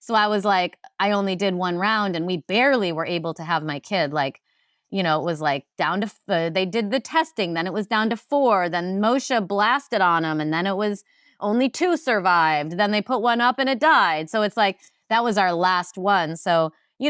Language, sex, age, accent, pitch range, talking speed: English, female, 30-49, American, 175-235 Hz, 230 wpm